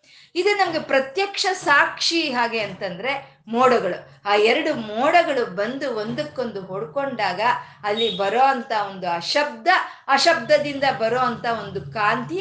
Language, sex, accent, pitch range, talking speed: Kannada, female, native, 200-275 Hz, 100 wpm